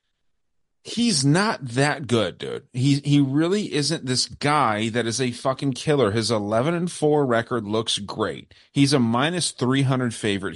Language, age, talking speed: English, 30-49, 160 wpm